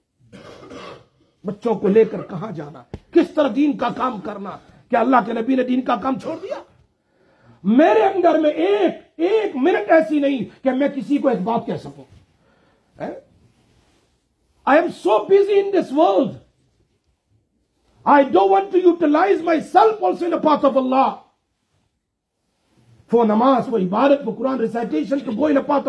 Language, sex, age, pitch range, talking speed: English, male, 50-69, 255-350 Hz, 155 wpm